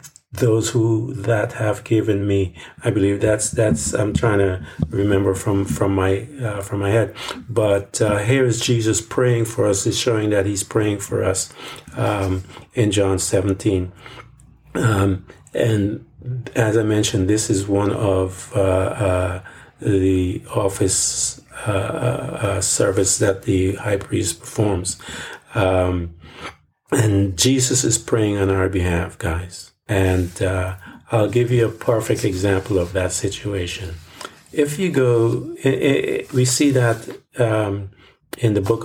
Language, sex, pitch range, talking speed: English, male, 95-115 Hz, 145 wpm